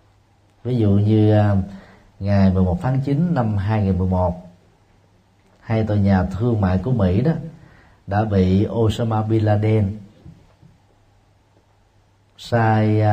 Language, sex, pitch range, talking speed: Vietnamese, male, 95-120 Hz, 105 wpm